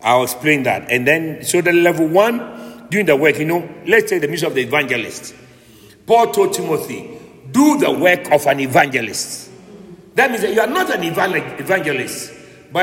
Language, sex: English, male